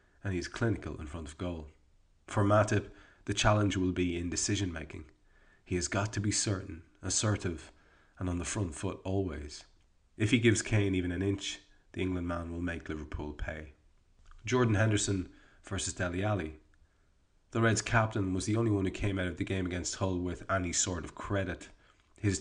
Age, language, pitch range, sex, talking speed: 30-49, English, 90-105 Hz, male, 185 wpm